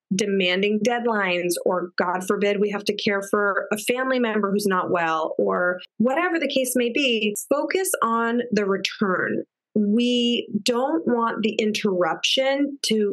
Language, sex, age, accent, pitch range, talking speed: English, female, 30-49, American, 195-235 Hz, 145 wpm